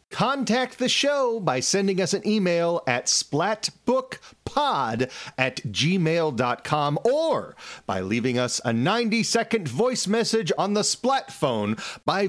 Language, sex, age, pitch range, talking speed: English, male, 40-59, 135-230 Hz, 115 wpm